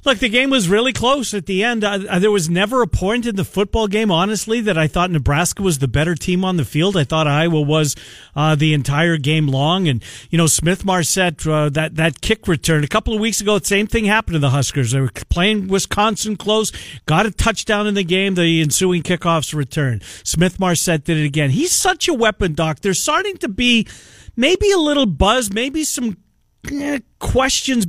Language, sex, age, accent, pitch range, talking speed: English, male, 50-69, American, 165-230 Hz, 205 wpm